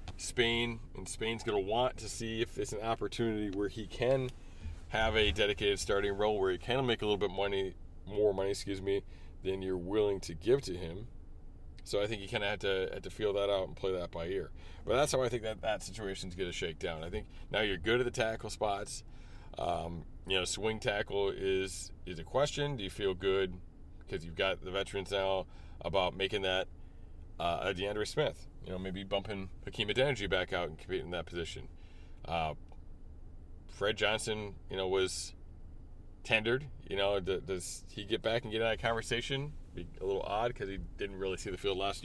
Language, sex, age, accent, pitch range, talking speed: English, male, 30-49, American, 85-110 Hz, 205 wpm